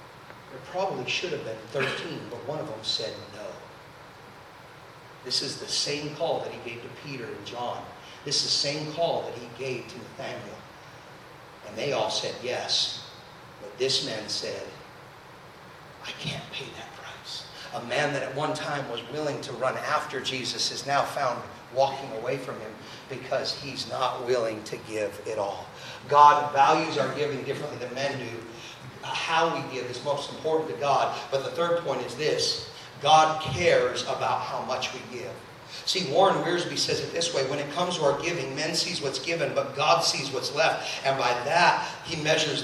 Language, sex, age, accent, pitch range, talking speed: English, male, 40-59, American, 135-165 Hz, 185 wpm